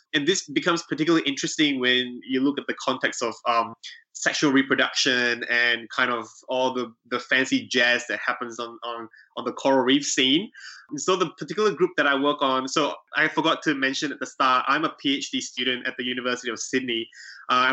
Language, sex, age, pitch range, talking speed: English, male, 20-39, 125-155 Hz, 195 wpm